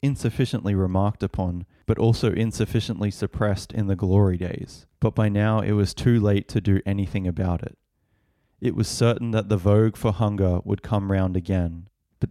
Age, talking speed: 20-39, 175 wpm